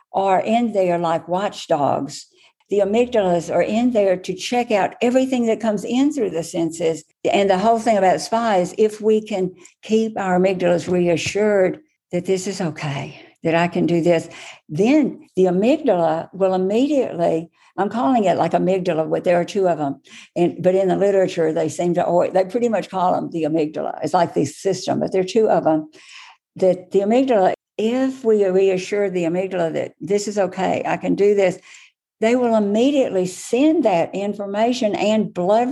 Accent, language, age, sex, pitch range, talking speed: American, English, 60-79, female, 180-230 Hz, 180 wpm